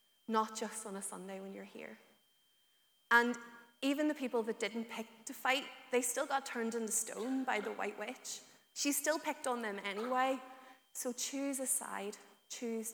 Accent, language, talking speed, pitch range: Irish, English, 175 wpm, 215-265 Hz